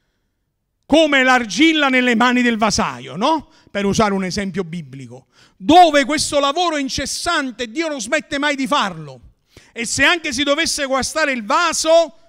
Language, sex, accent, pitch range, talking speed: Italian, male, native, 225-315 Hz, 145 wpm